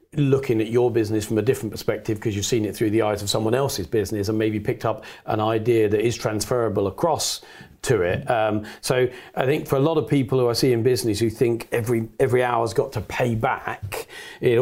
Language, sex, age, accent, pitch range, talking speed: English, male, 40-59, British, 110-125 Hz, 225 wpm